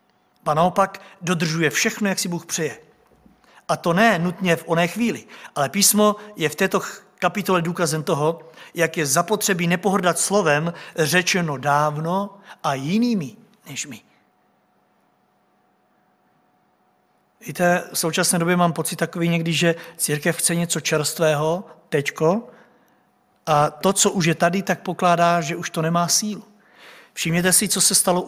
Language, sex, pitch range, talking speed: Czech, male, 170-200 Hz, 140 wpm